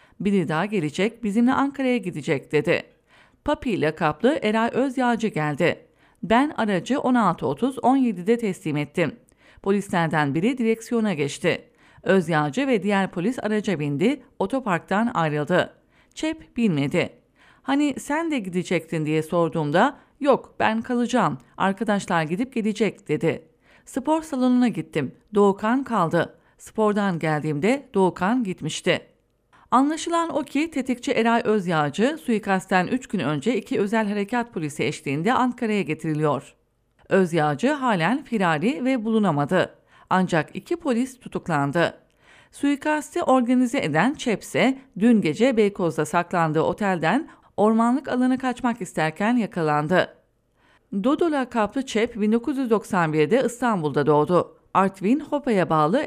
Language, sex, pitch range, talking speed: English, female, 170-250 Hz, 110 wpm